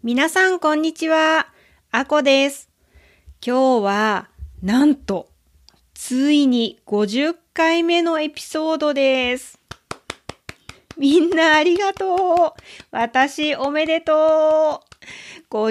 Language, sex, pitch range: Japanese, female, 210-300 Hz